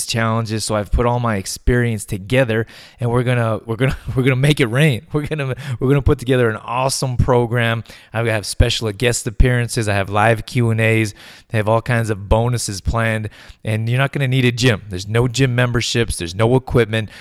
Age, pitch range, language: 20-39, 105-120 Hz, English